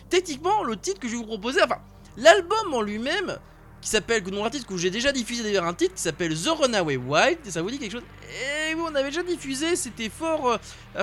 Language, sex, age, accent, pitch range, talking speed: French, male, 20-39, French, 185-280 Hz, 240 wpm